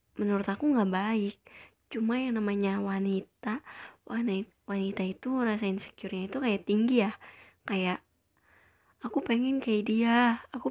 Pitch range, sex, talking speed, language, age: 210-245 Hz, female, 135 wpm, Indonesian, 20-39